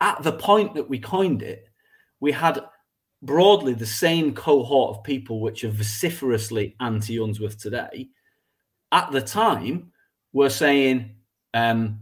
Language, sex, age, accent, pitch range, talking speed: English, male, 30-49, British, 120-190 Hz, 130 wpm